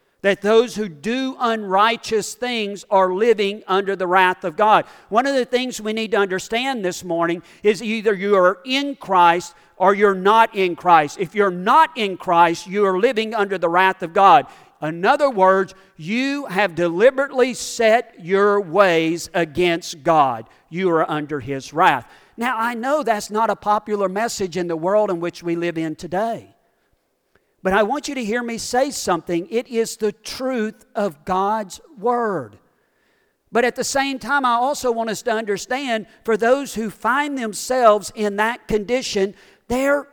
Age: 50-69